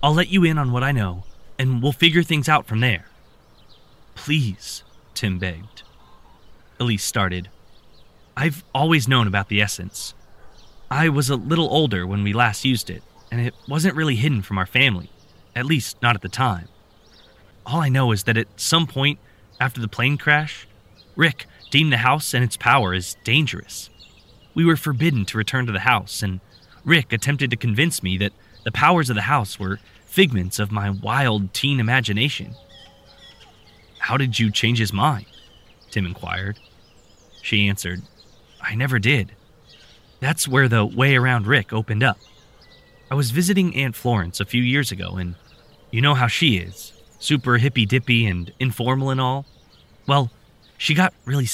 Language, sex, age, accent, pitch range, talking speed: English, male, 20-39, American, 100-140 Hz, 170 wpm